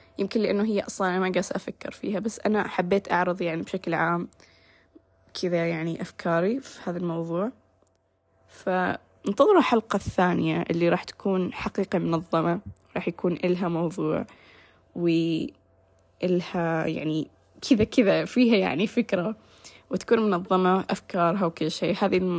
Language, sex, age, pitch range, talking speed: Arabic, female, 10-29, 165-195 Hz, 125 wpm